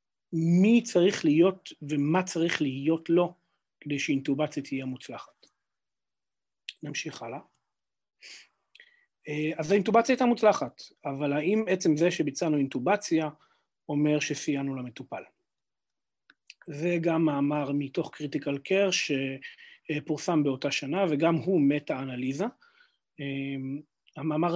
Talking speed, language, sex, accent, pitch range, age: 100 wpm, Hebrew, male, native, 140-175 Hz, 40-59